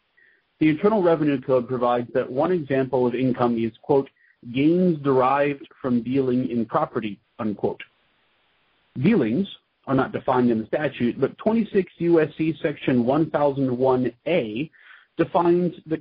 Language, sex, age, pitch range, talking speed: English, male, 40-59, 125-165 Hz, 125 wpm